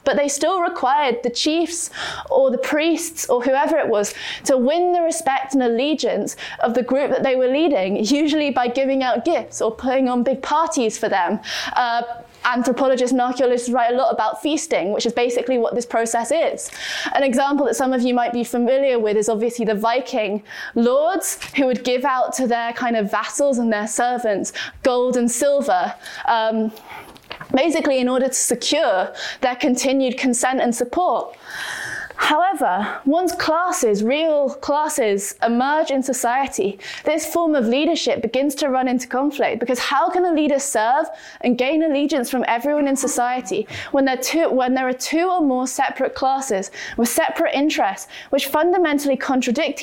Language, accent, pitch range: English, British, 245-305 Hz